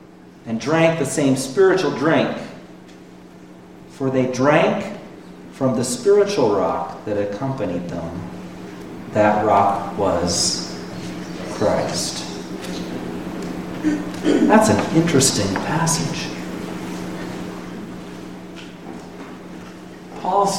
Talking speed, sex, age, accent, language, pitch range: 75 wpm, male, 40-59, American, English, 125-170 Hz